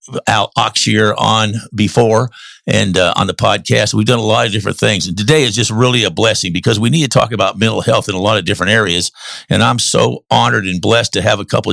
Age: 50-69